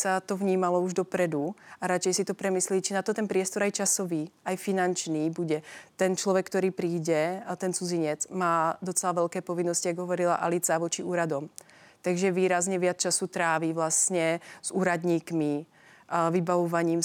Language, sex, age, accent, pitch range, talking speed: Czech, female, 30-49, native, 170-185 Hz, 160 wpm